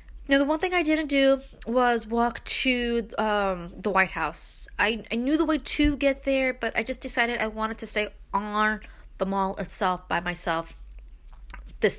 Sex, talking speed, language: female, 185 wpm, English